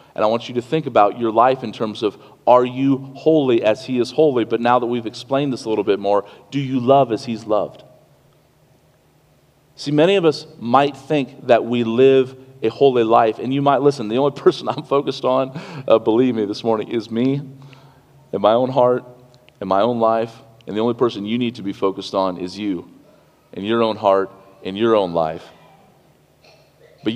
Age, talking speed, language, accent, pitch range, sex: 40-59, 205 wpm, English, American, 110-135 Hz, male